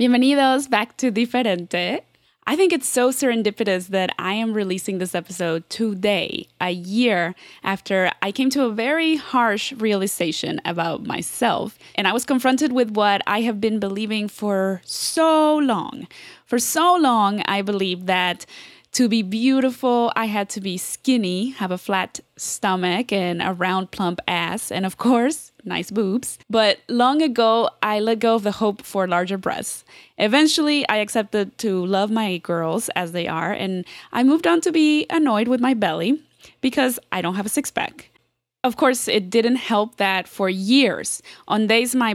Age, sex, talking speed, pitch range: 20-39, female, 170 wpm, 190-250 Hz